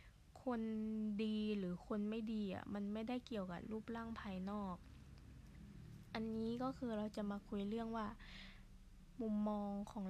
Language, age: Thai, 20-39